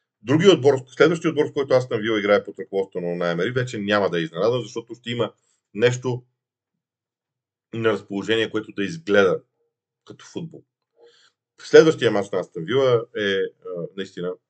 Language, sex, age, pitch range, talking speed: Bulgarian, male, 40-59, 110-160 Hz, 150 wpm